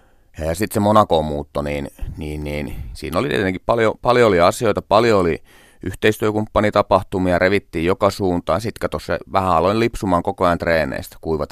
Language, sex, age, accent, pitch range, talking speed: Finnish, male, 30-49, native, 75-95 Hz, 150 wpm